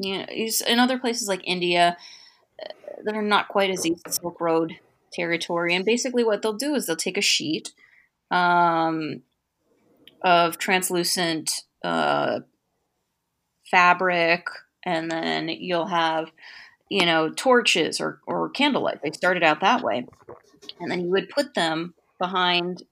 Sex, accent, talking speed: female, American, 140 wpm